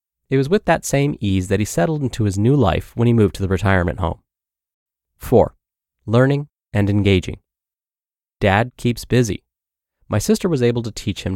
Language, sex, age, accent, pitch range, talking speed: English, male, 30-49, American, 100-135 Hz, 180 wpm